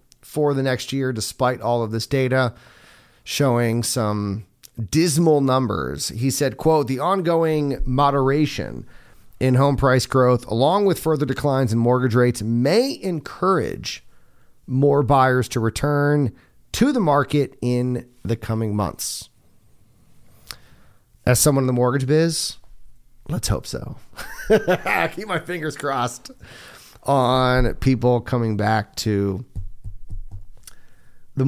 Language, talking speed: English, 120 wpm